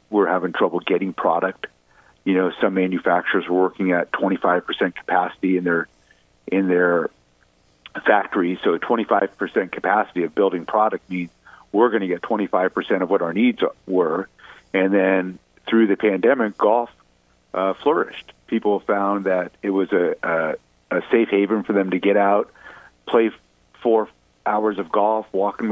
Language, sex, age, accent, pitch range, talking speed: English, male, 50-69, American, 85-105 Hz, 160 wpm